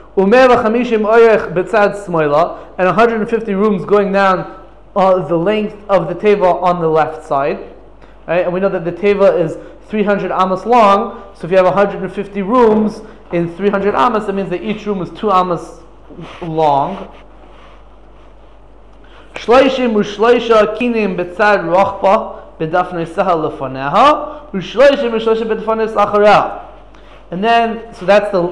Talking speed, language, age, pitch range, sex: 105 wpm, English, 20-39, 170-220 Hz, male